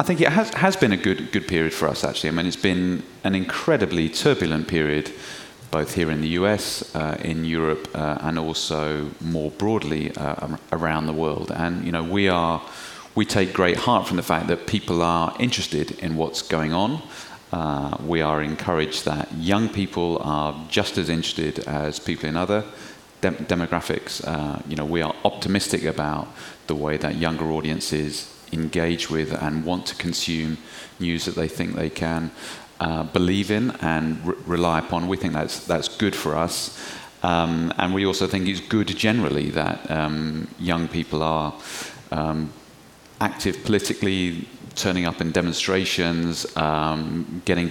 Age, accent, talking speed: 30-49, British, 170 wpm